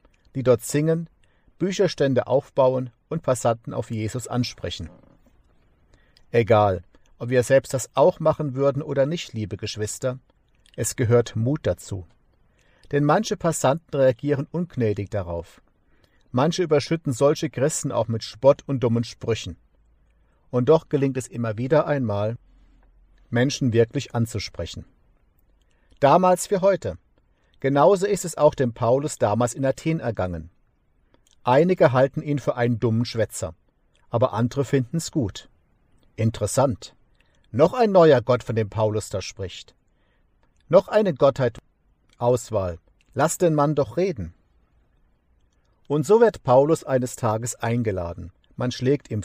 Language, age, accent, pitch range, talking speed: German, 50-69, German, 110-145 Hz, 130 wpm